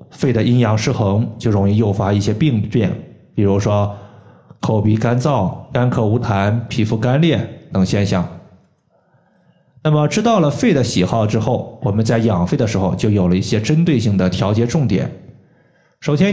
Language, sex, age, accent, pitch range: Chinese, male, 20-39, native, 105-135 Hz